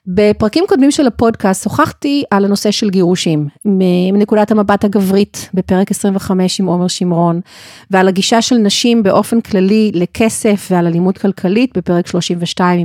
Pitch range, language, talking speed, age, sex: 180-240 Hz, Hebrew, 135 wpm, 40-59, female